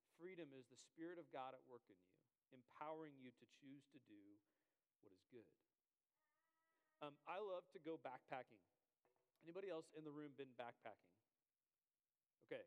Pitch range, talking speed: 135-170 Hz, 155 wpm